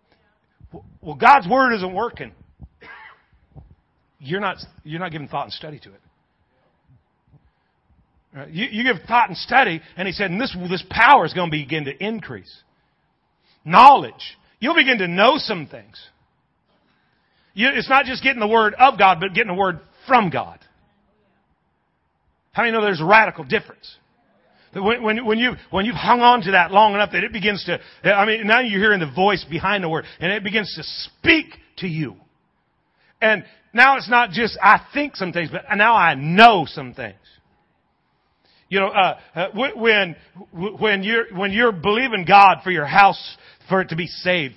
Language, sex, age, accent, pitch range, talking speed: English, male, 40-59, American, 175-225 Hz, 175 wpm